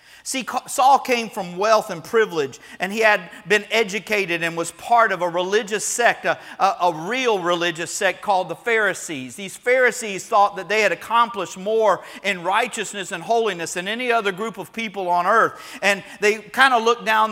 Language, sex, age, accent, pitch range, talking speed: English, male, 40-59, American, 185-235 Hz, 185 wpm